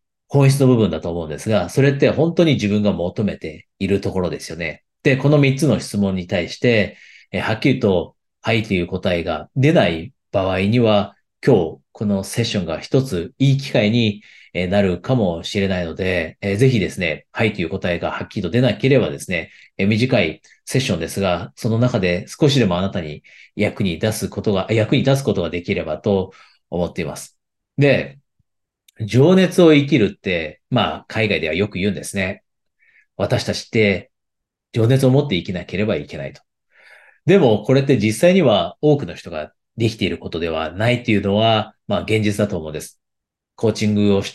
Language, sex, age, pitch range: Japanese, male, 40-59, 95-130 Hz